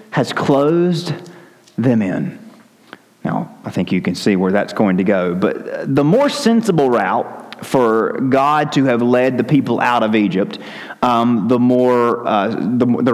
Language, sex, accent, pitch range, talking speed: English, male, American, 125-165 Hz, 165 wpm